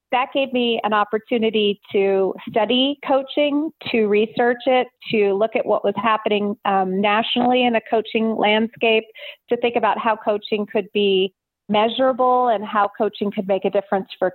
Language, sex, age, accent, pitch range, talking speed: English, female, 30-49, American, 200-235 Hz, 165 wpm